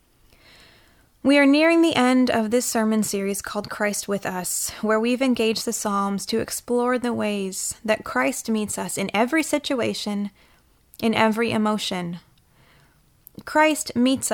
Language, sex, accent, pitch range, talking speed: English, female, American, 205-255 Hz, 140 wpm